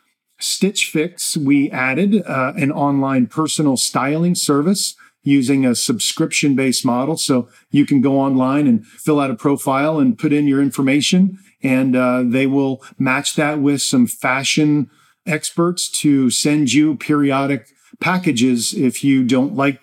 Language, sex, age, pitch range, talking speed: English, male, 50-69, 135-160 Hz, 145 wpm